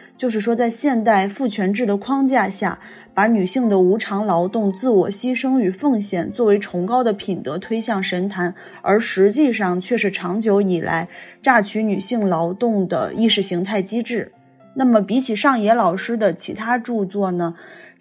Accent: native